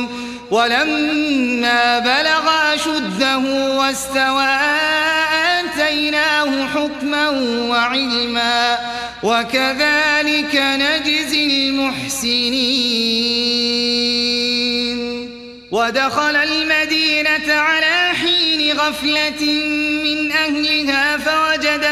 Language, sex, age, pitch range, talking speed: Arabic, male, 30-49, 265-310 Hz, 50 wpm